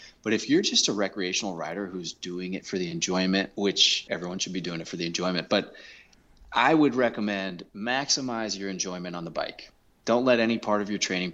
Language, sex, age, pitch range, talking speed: English, male, 30-49, 90-105 Hz, 205 wpm